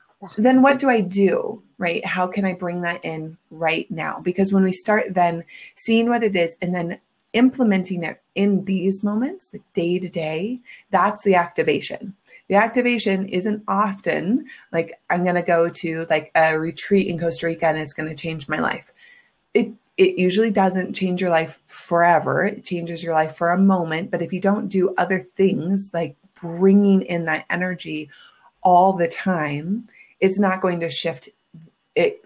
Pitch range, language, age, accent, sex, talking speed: 170-205 Hz, English, 30-49, American, female, 180 wpm